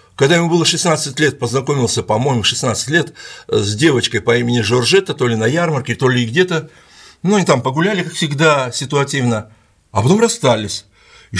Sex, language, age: male, Russian, 60-79